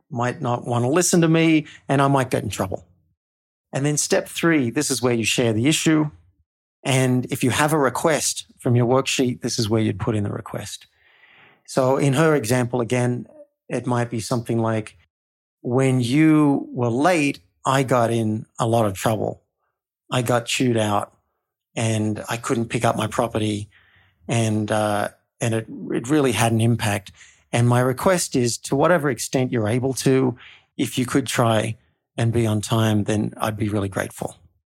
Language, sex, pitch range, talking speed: English, male, 110-145 Hz, 180 wpm